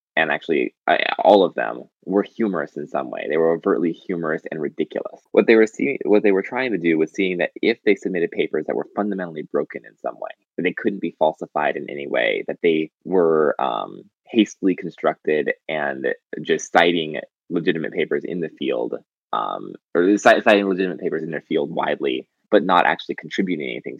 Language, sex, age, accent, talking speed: English, male, 20-39, American, 195 wpm